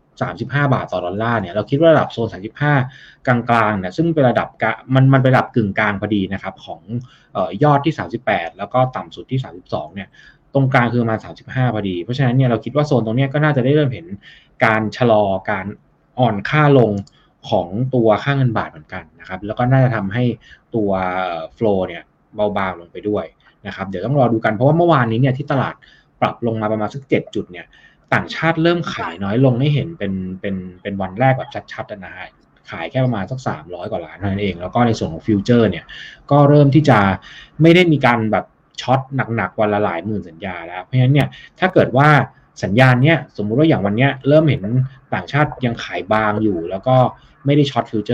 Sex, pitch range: male, 105-135 Hz